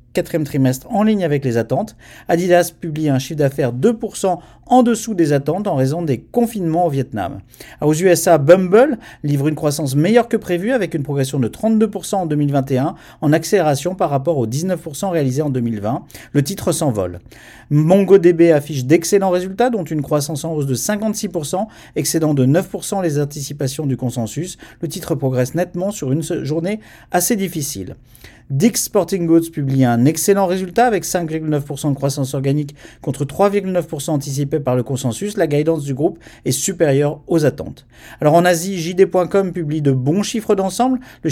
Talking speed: 165 wpm